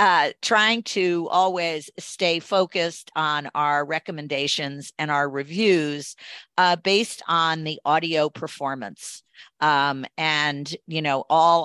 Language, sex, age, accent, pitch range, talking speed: English, female, 50-69, American, 145-170 Hz, 120 wpm